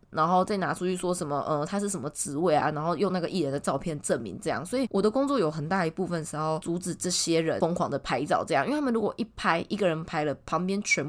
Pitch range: 170-235 Hz